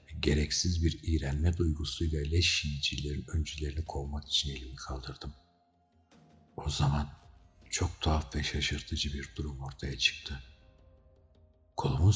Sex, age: male, 60-79